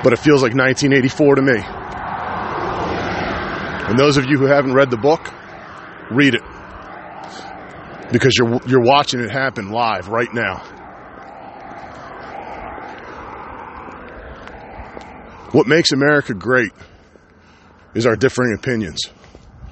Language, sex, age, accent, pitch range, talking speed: English, male, 40-59, American, 110-145 Hz, 105 wpm